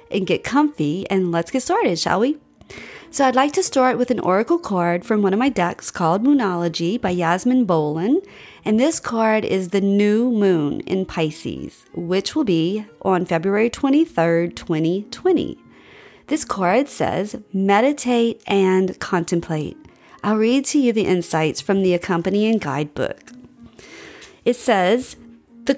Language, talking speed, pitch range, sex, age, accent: English, 145 wpm, 185-255 Hz, female, 40-59, American